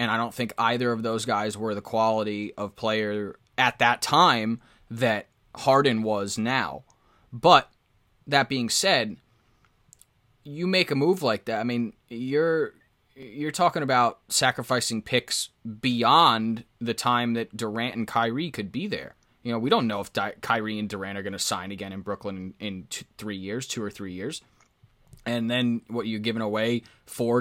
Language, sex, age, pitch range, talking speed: English, male, 20-39, 110-125 Hz, 175 wpm